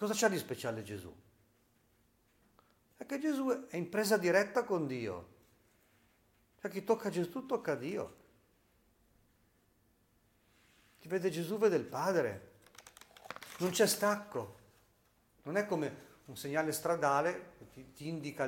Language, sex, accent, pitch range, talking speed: Italian, male, native, 110-160 Hz, 125 wpm